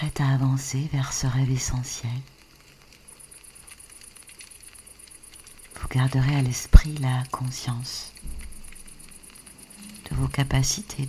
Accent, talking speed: French, 85 wpm